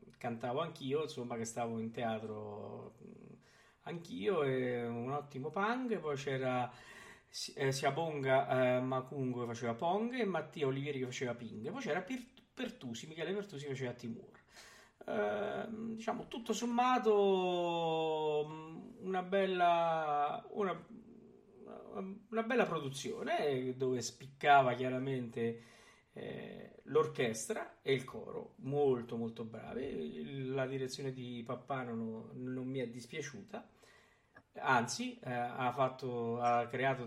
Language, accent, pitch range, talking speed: Italian, native, 120-160 Hz, 120 wpm